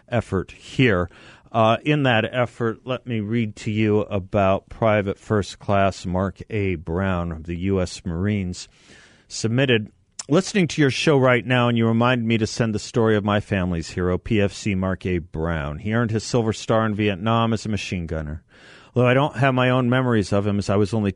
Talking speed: 195 wpm